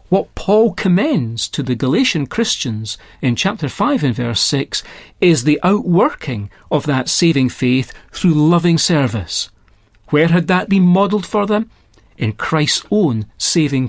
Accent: British